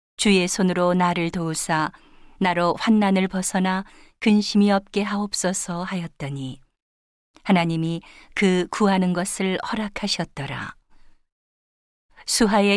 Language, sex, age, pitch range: Korean, female, 50-69, 165-200 Hz